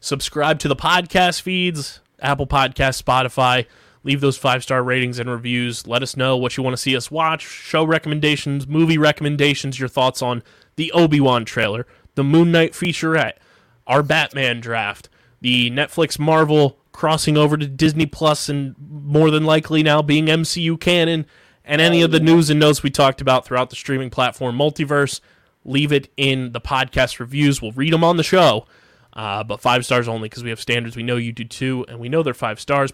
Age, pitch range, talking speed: 20-39, 125-150 Hz, 190 wpm